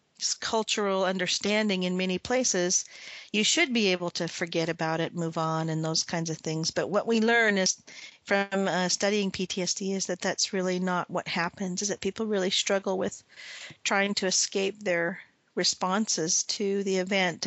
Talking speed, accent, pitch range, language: 170 wpm, American, 180-210 Hz, English